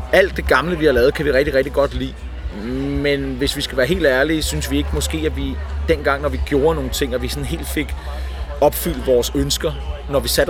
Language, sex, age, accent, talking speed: Danish, male, 30-49, native, 240 wpm